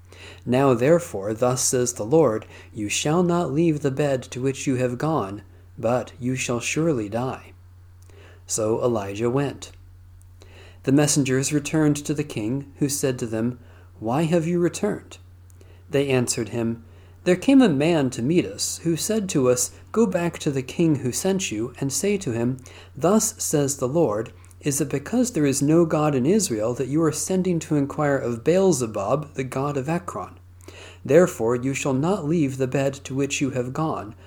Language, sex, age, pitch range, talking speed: English, male, 40-59, 95-150 Hz, 180 wpm